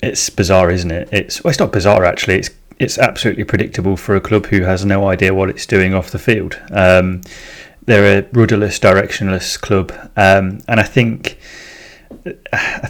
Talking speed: 175 wpm